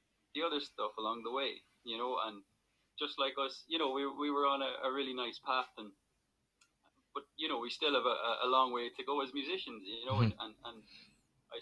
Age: 20-39